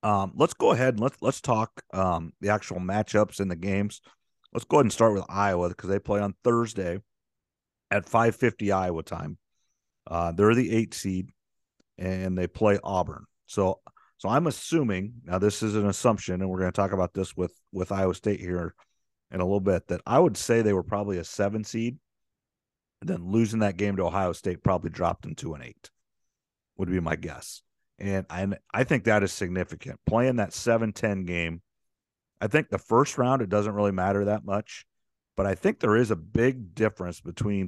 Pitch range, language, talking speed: 90-110 Hz, English, 195 wpm